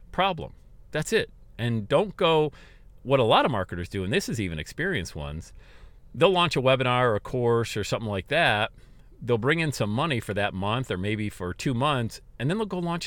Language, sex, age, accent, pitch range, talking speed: English, male, 40-59, American, 110-170 Hz, 215 wpm